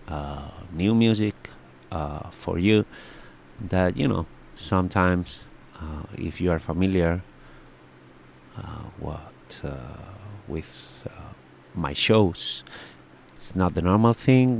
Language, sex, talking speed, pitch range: English, male, 110 wpm, 75-95 Hz